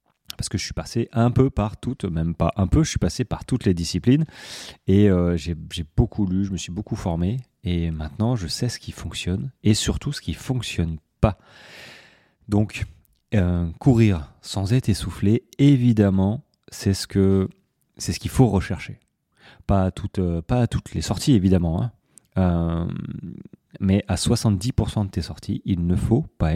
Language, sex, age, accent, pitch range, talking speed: French, male, 30-49, French, 90-115 Hz, 185 wpm